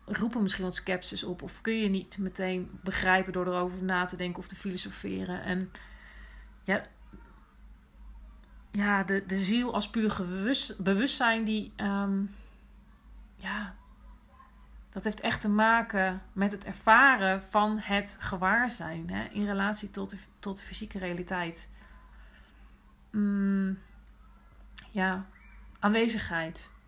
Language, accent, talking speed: Dutch, Dutch, 120 wpm